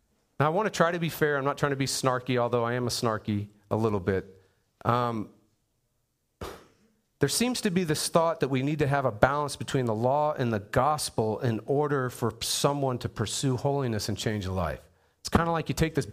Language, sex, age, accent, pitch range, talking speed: English, male, 40-59, American, 115-155 Hz, 220 wpm